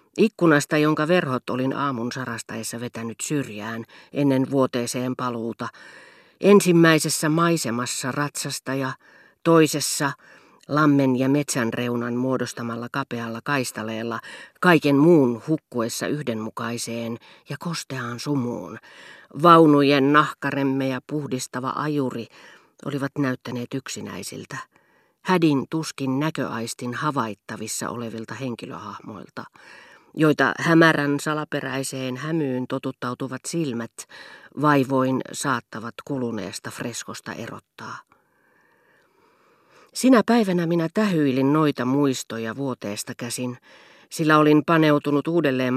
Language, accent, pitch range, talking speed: Finnish, native, 120-150 Hz, 85 wpm